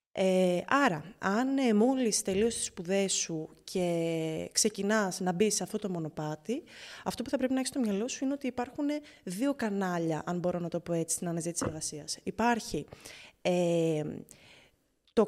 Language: Greek